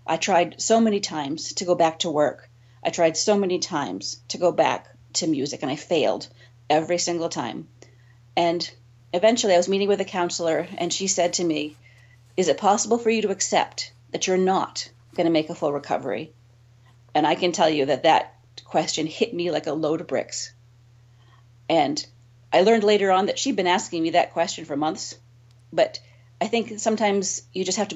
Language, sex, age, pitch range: English, female, 40-59, 120-195 Hz